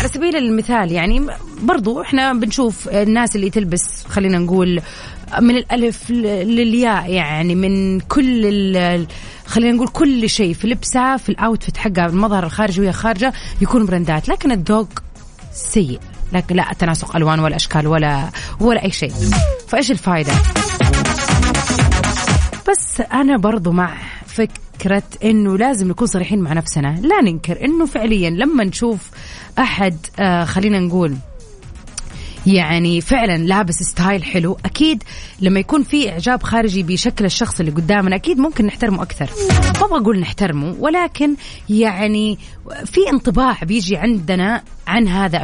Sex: female